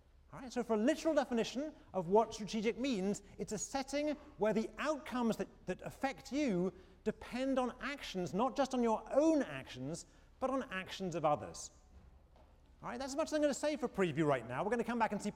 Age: 40-59